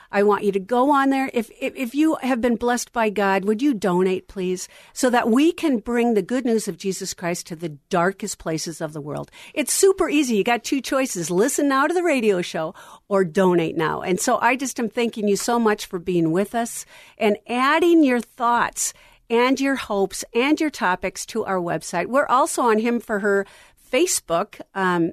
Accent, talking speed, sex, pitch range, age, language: American, 210 wpm, female, 190-255 Hz, 50-69, English